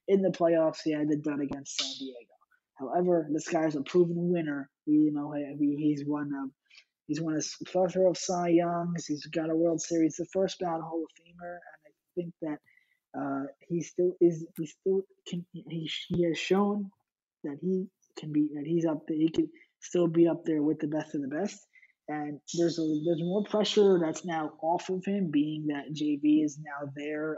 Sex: male